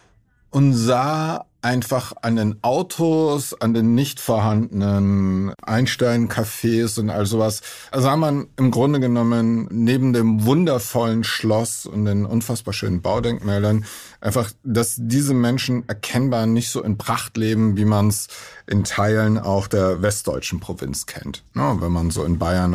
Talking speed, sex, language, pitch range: 140 wpm, male, German, 105-125 Hz